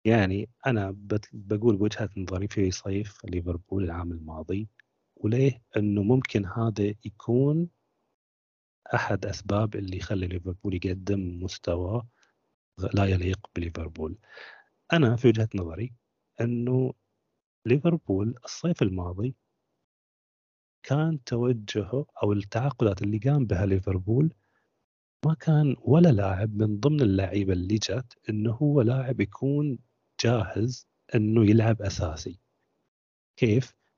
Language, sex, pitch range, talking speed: Arabic, male, 100-135 Hz, 105 wpm